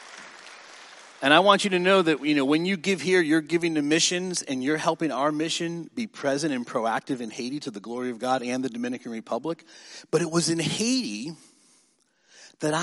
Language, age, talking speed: English, 40-59, 200 wpm